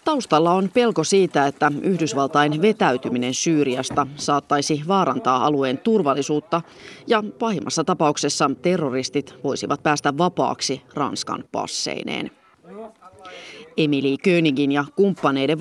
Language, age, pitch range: Finnish, 30-49, 140-185 Hz